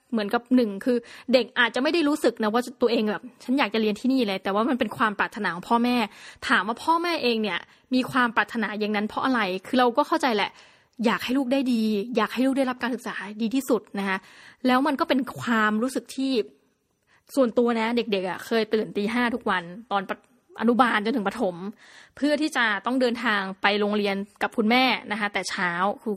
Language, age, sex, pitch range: Thai, 20-39, female, 210-255 Hz